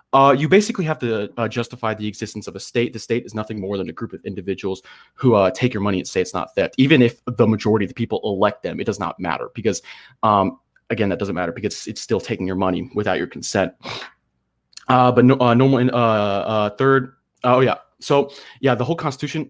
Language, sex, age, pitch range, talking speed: English, male, 30-49, 105-125 Hz, 235 wpm